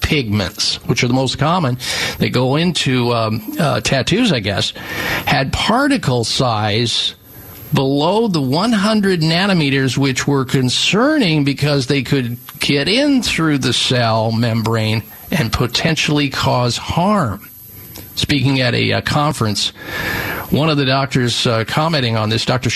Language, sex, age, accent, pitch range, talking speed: English, male, 50-69, American, 115-150 Hz, 135 wpm